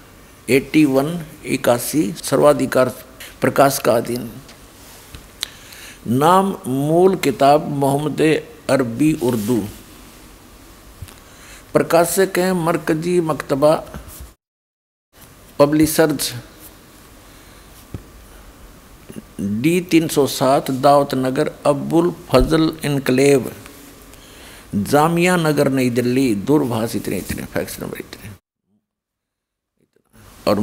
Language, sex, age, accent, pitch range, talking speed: Hindi, male, 60-79, native, 125-165 Hz, 45 wpm